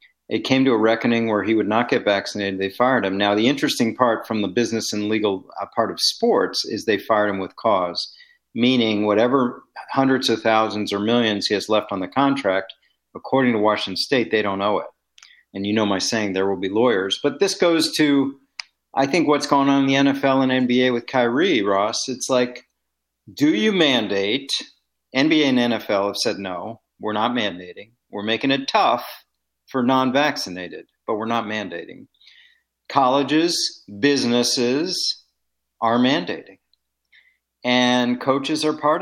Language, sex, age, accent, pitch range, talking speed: English, male, 50-69, American, 105-140 Hz, 170 wpm